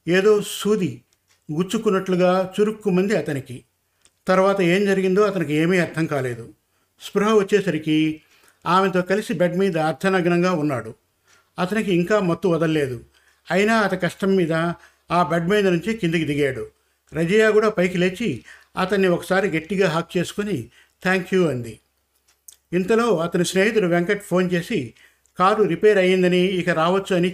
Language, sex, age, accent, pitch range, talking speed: Telugu, male, 50-69, native, 160-195 Hz, 125 wpm